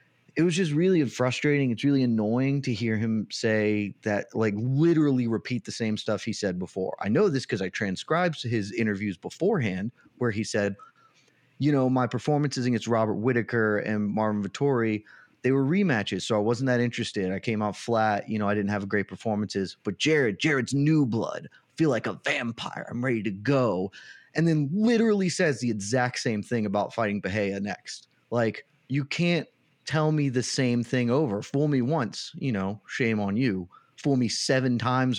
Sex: male